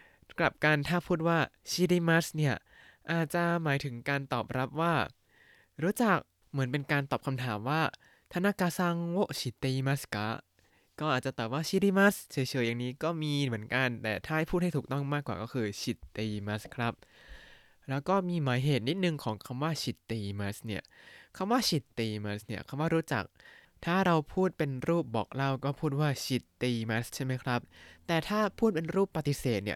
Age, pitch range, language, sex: 20-39, 125-175 Hz, Thai, male